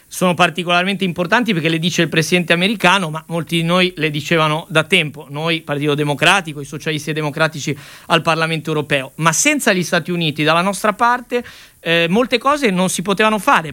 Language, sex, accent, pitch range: Italian, male, native, 160-200 Hz